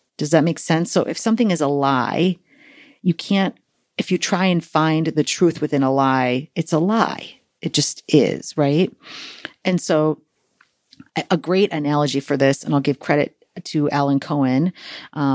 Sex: female